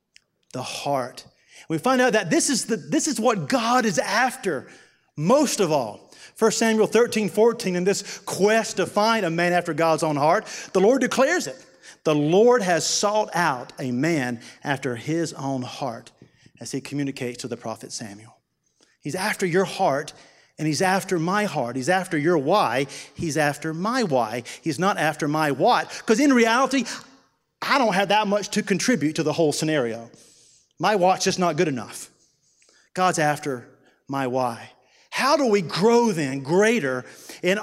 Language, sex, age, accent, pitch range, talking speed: English, male, 40-59, American, 160-230 Hz, 170 wpm